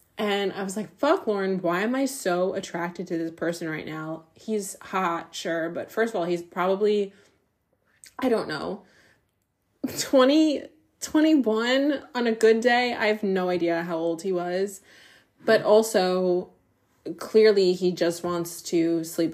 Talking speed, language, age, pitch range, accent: 155 wpm, English, 20-39, 170-205 Hz, American